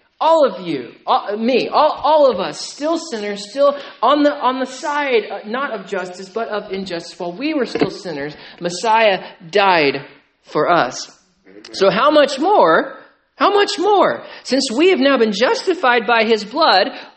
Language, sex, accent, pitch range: English, male, American, 180-260 Hz